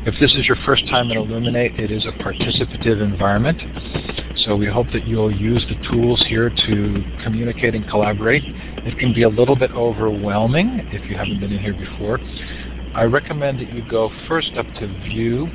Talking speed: 190 wpm